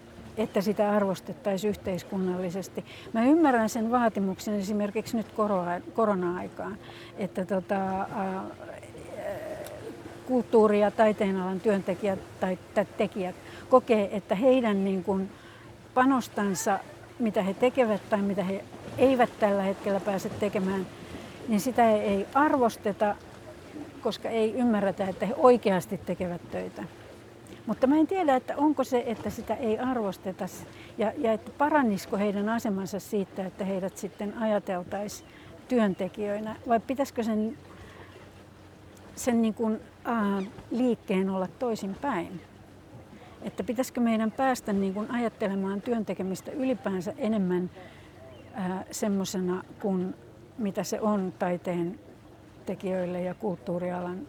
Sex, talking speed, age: female, 115 wpm, 60-79